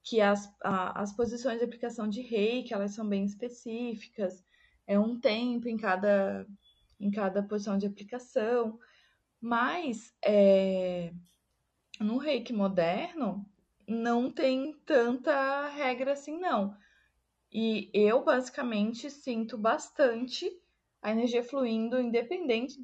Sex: female